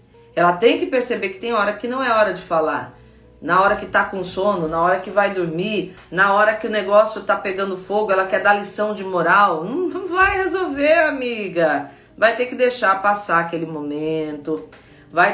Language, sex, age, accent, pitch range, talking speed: Portuguese, female, 40-59, Brazilian, 185-245 Hz, 200 wpm